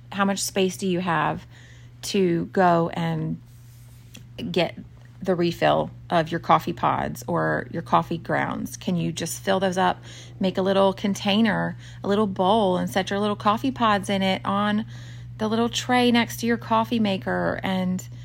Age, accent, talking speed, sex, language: 30-49, American, 170 wpm, female, English